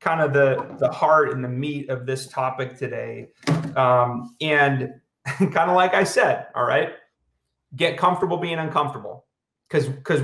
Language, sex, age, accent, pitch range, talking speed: English, male, 30-49, American, 130-170 Hz, 160 wpm